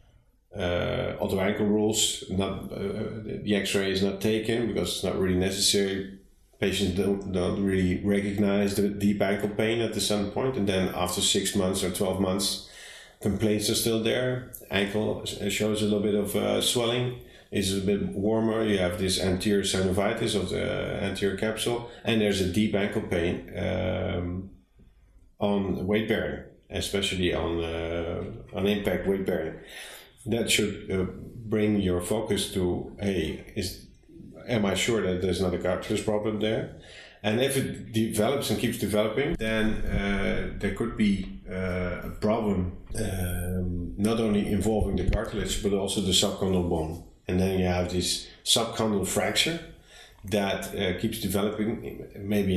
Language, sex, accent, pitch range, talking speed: English, male, Dutch, 90-105 Hz, 150 wpm